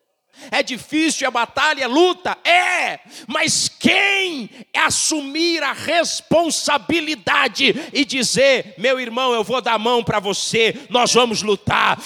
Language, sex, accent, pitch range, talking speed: Portuguese, male, Brazilian, 220-270 Hz, 135 wpm